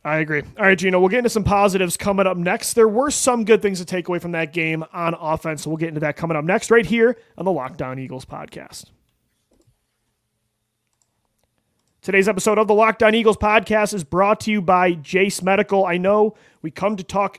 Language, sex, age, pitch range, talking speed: English, male, 30-49, 155-195 Hz, 205 wpm